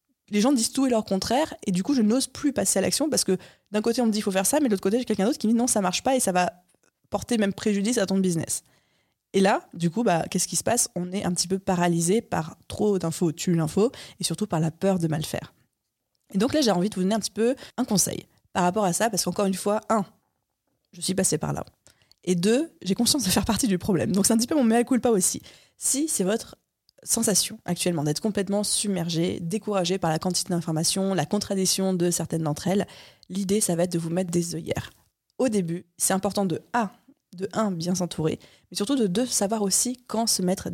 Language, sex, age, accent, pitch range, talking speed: French, female, 20-39, French, 175-220 Hz, 250 wpm